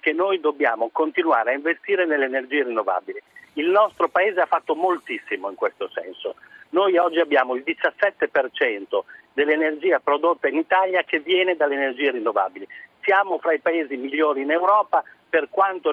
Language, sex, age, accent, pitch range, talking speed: Italian, male, 50-69, native, 155-225 Hz, 155 wpm